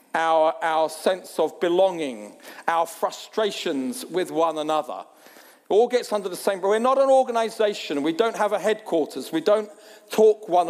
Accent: British